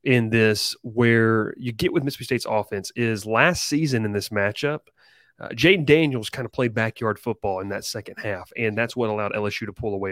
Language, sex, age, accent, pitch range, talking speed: English, male, 30-49, American, 105-130 Hz, 210 wpm